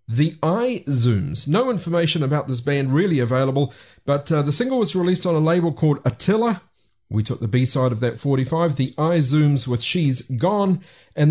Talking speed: 185 wpm